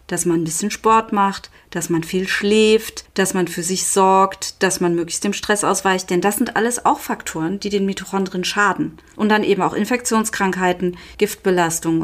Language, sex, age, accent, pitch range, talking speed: German, female, 30-49, German, 175-205 Hz, 185 wpm